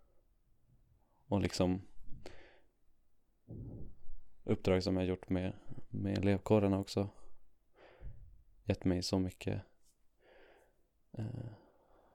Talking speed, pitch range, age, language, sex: 70 wpm, 90-100 Hz, 20-39, Swedish, male